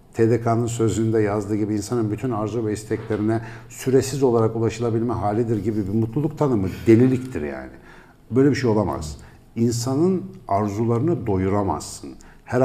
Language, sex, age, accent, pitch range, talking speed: Turkish, male, 60-79, native, 105-125 Hz, 130 wpm